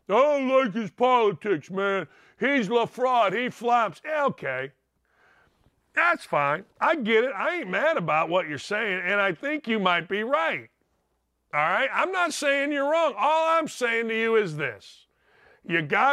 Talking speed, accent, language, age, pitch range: 170 wpm, American, English, 50-69, 175-270 Hz